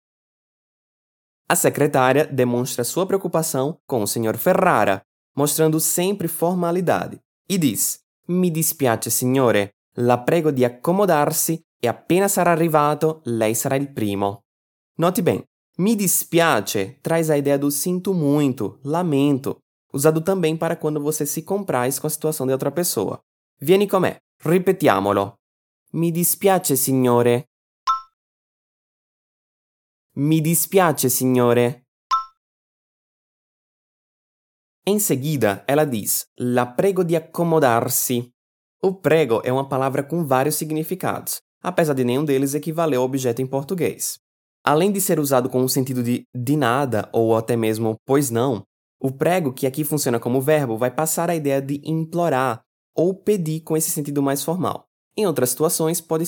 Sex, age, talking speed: male, 20-39, 135 wpm